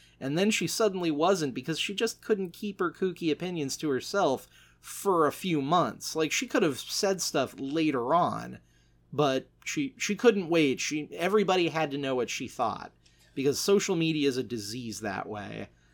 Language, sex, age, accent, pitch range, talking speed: English, male, 30-49, American, 125-160 Hz, 180 wpm